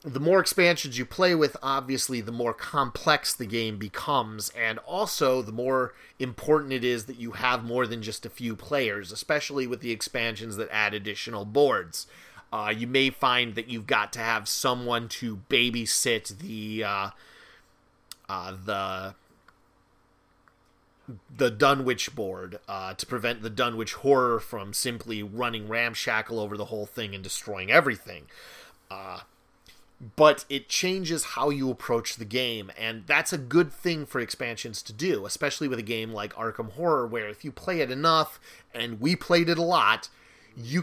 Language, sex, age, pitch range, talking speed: English, male, 30-49, 110-140 Hz, 165 wpm